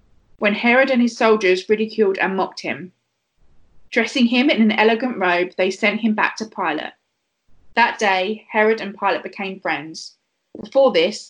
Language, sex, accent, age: English, female, British, 20-39